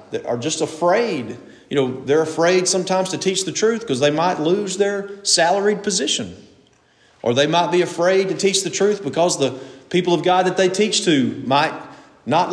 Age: 40-59